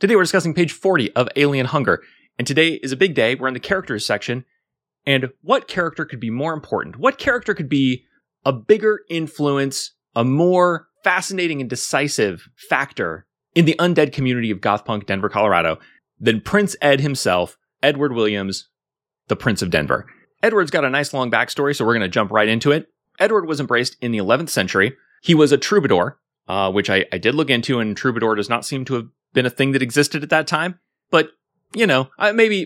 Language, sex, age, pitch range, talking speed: English, male, 30-49, 115-160 Hz, 200 wpm